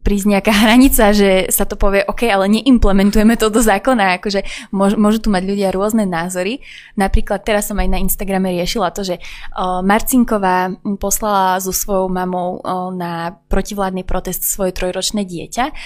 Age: 20-39